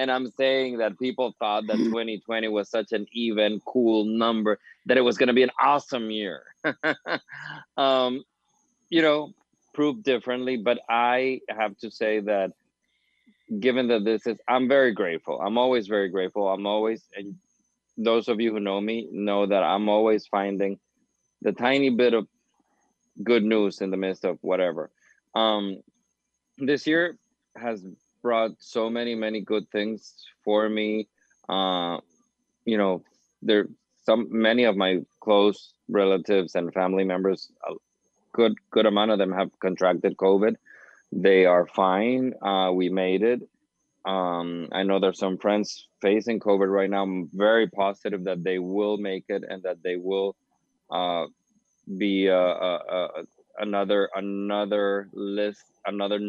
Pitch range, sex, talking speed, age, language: 95-115 Hz, male, 155 wpm, 20-39, English